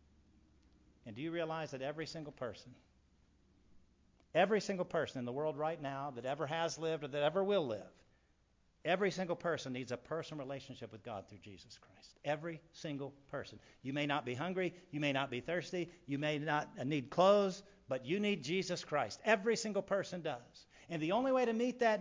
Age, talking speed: 50-69, 195 wpm